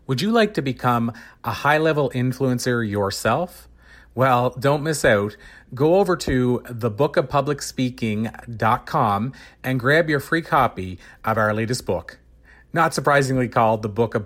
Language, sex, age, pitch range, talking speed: English, male, 40-59, 115-140 Hz, 135 wpm